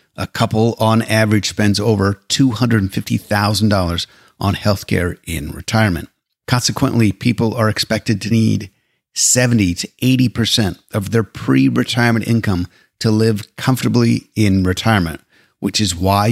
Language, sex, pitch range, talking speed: English, male, 95-115 Hz, 120 wpm